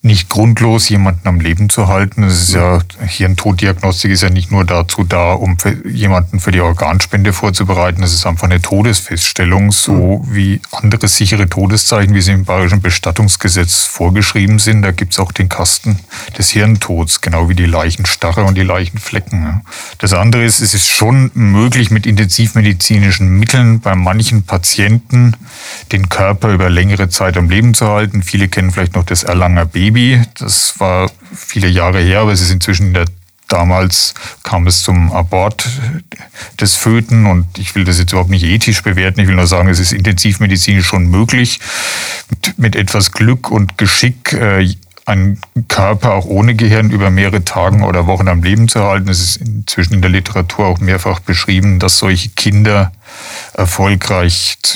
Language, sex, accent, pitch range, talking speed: German, male, German, 90-105 Hz, 165 wpm